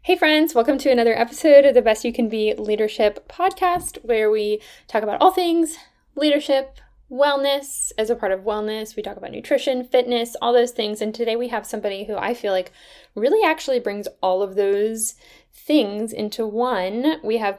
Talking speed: 190 wpm